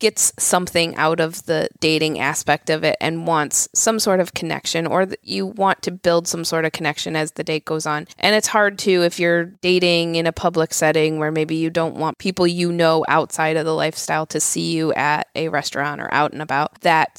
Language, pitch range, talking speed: English, 160-185 Hz, 225 wpm